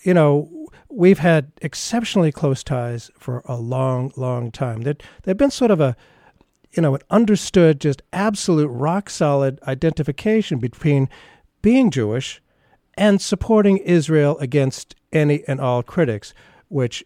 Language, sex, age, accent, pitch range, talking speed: English, male, 50-69, American, 135-195 Hz, 135 wpm